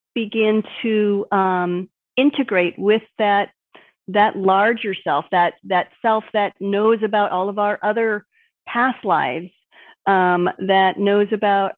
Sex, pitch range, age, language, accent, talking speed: female, 190-230 Hz, 40-59, English, American, 125 wpm